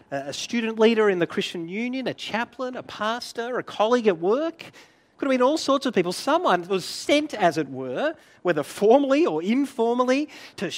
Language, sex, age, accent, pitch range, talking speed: English, male, 40-59, Australian, 185-270 Hz, 185 wpm